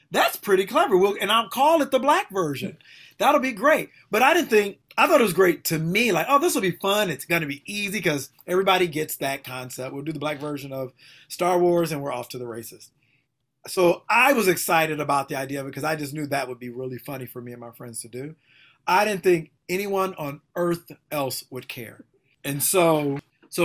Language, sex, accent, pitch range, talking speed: English, male, American, 140-190 Hz, 225 wpm